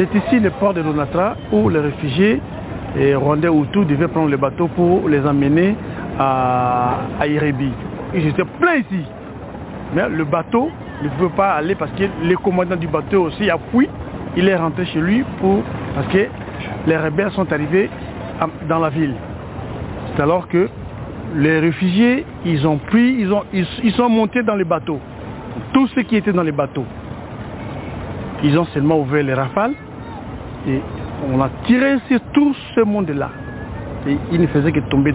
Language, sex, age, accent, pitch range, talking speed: English, male, 60-79, French, 145-200 Hz, 170 wpm